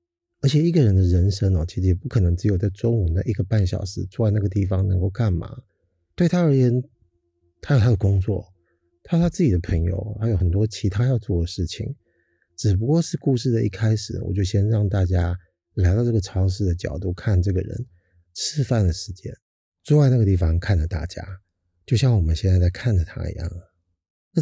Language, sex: Chinese, male